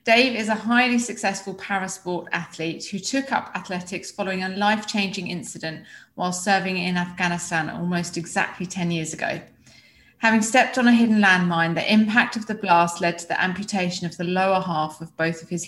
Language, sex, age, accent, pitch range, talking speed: English, female, 30-49, British, 180-215 Hz, 180 wpm